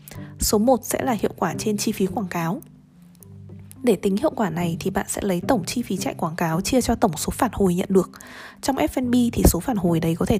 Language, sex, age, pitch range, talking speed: Vietnamese, female, 20-39, 190-250 Hz, 250 wpm